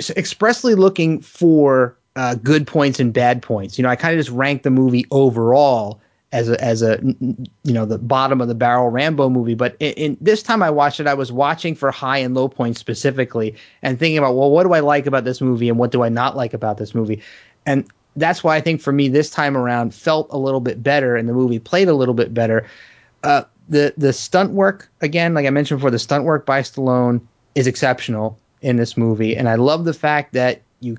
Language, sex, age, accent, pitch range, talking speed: English, male, 30-49, American, 120-145 Hz, 230 wpm